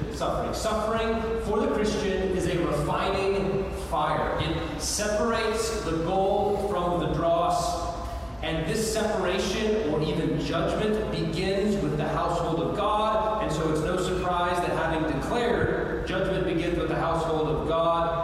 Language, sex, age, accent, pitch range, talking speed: English, male, 40-59, American, 160-195 Hz, 140 wpm